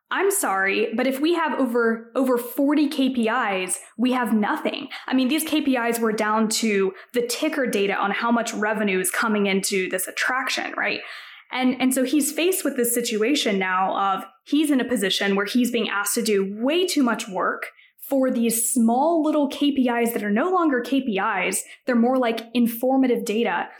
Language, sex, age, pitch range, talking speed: English, female, 10-29, 215-270 Hz, 180 wpm